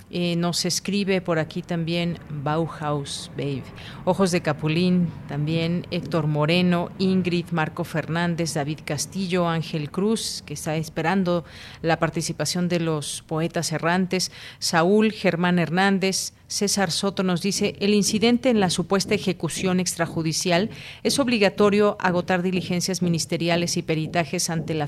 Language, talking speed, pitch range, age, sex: Spanish, 130 wpm, 160-190 Hz, 40-59, female